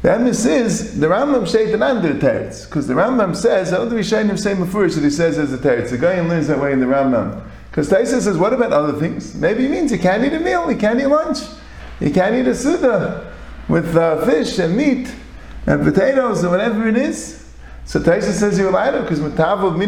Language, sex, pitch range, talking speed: English, male, 165-230 Hz, 230 wpm